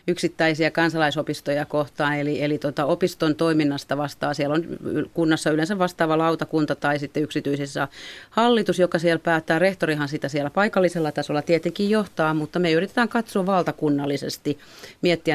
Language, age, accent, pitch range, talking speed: Finnish, 30-49, native, 150-190 Hz, 135 wpm